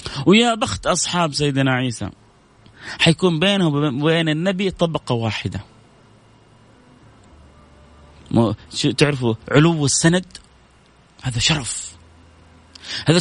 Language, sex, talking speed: Arabic, male, 75 wpm